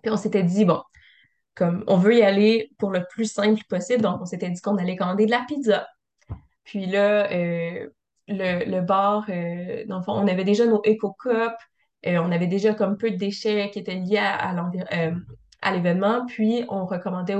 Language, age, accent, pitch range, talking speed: French, 20-39, Canadian, 180-210 Hz, 205 wpm